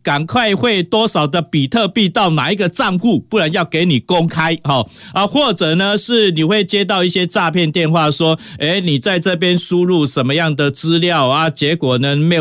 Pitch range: 130-180 Hz